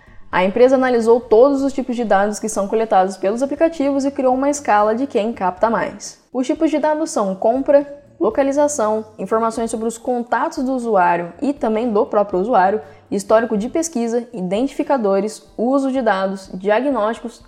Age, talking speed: 10-29, 160 wpm